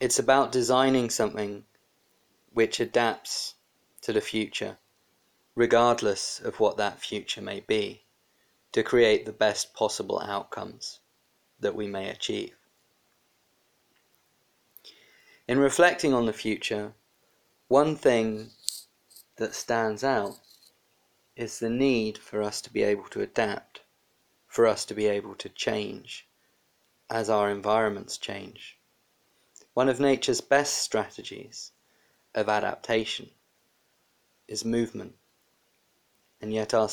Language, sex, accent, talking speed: English, male, British, 110 wpm